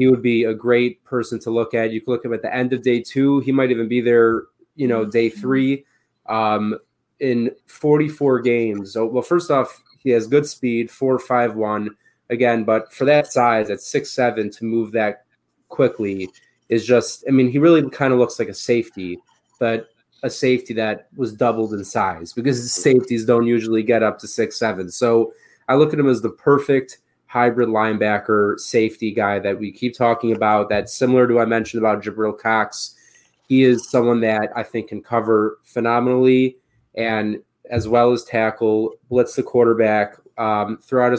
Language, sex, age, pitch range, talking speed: English, male, 20-39, 110-125 Hz, 190 wpm